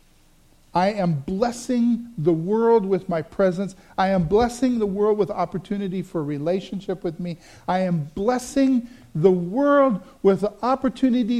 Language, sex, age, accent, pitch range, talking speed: English, male, 50-69, American, 180-240 Hz, 140 wpm